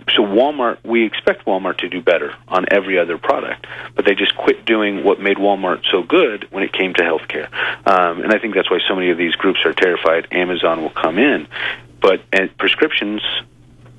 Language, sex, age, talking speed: English, male, 40-59, 205 wpm